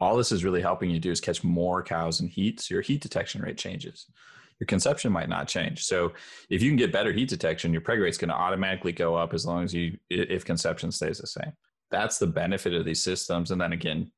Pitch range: 85-95 Hz